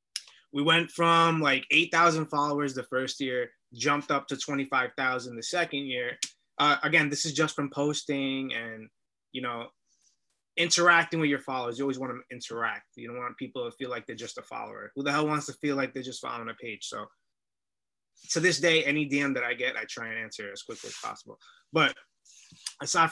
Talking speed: 200 wpm